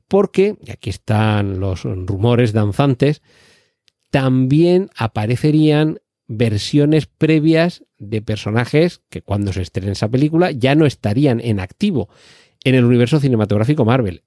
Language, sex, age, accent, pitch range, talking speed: Spanish, male, 40-59, Spanish, 110-145 Hz, 120 wpm